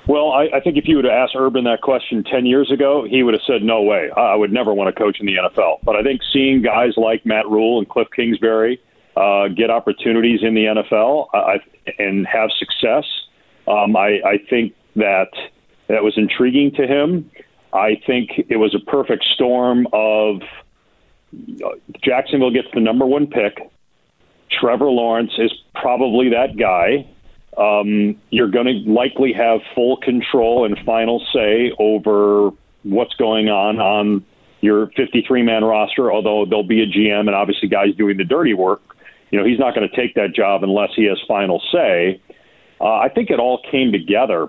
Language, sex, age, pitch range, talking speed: English, male, 40-59, 105-125 Hz, 180 wpm